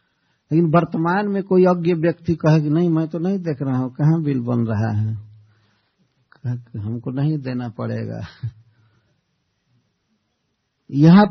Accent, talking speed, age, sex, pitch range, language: native, 135 wpm, 50-69, male, 120-160 Hz, Hindi